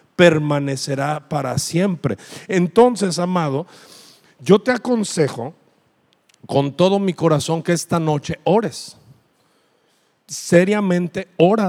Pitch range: 130-175 Hz